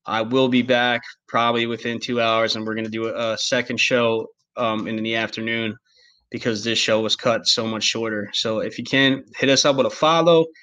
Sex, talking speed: male, 215 wpm